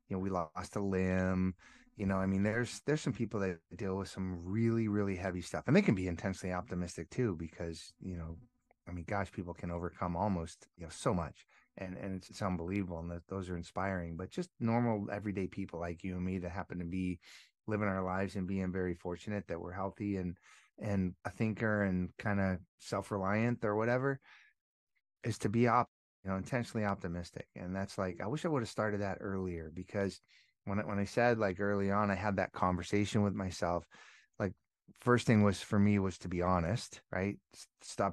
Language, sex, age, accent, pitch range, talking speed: English, male, 30-49, American, 90-110 Hz, 210 wpm